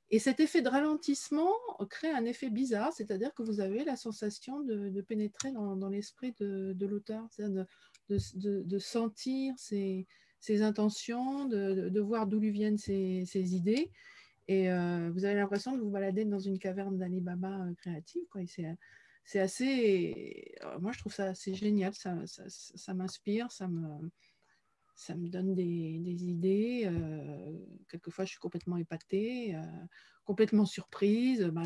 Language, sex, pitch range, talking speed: French, female, 185-220 Hz, 175 wpm